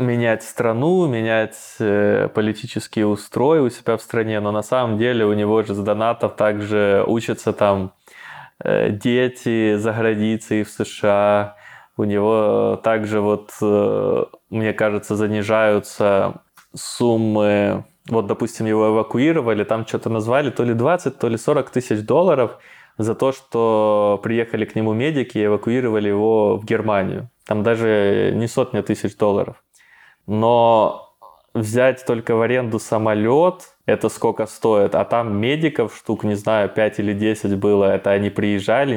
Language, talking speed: Russian, 135 wpm